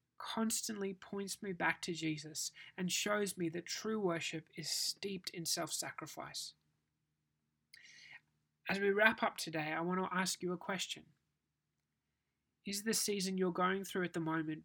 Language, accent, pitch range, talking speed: English, Australian, 165-205 Hz, 150 wpm